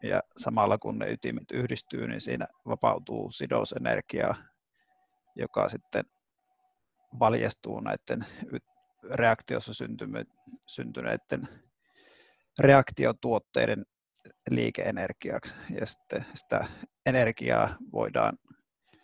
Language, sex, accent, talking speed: Finnish, male, native, 75 wpm